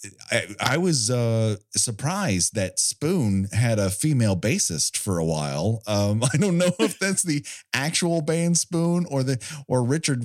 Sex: male